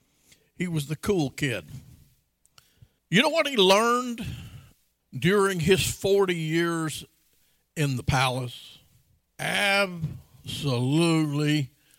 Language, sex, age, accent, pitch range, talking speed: English, male, 50-69, American, 130-210 Hz, 90 wpm